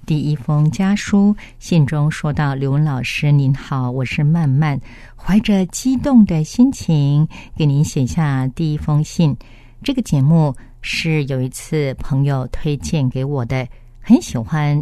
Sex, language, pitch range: female, Chinese, 125-160 Hz